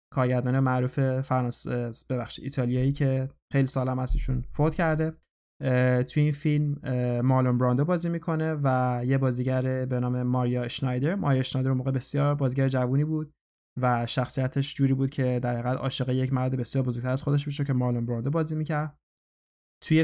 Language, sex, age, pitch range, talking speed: Persian, male, 20-39, 125-145 Hz, 160 wpm